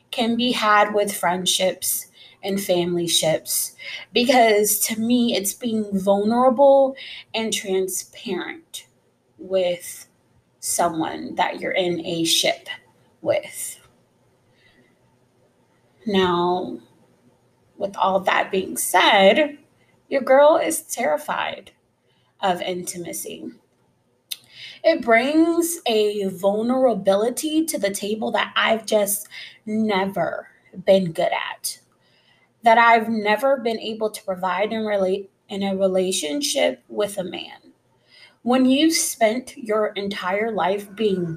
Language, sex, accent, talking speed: English, female, American, 100 wpm